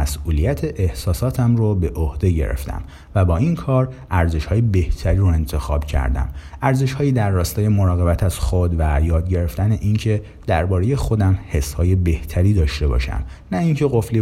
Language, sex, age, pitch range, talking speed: Persian, male, 30-49, 80-110 Hz, 150 wpm